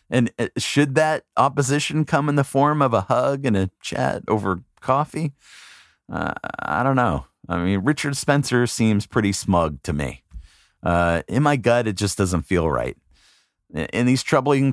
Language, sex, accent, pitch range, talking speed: English, male, American, 100-150 Hz, 165 wpm